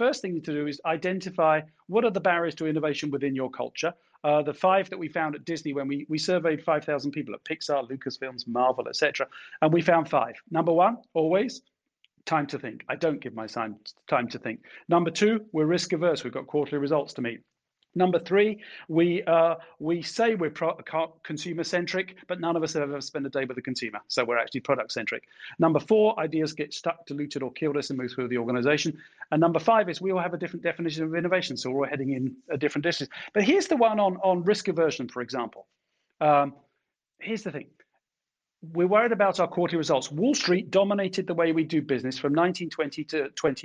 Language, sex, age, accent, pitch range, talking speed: English, male, 40-59, British, 145-185 Hz, 210 wpm